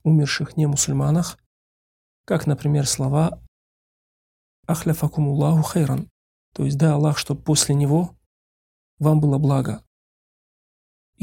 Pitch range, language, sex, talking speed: 135-155 Hz, Russian, male, 100 wpm